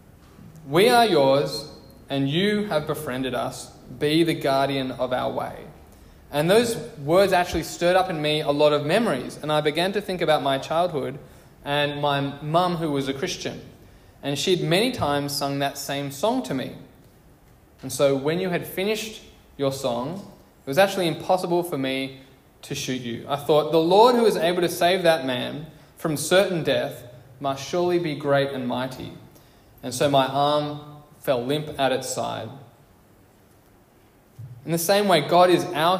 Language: English